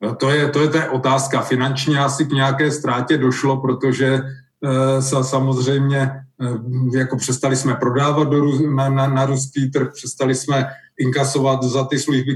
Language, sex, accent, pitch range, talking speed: Czech, male, native, 130-145 Hz, 160 wpm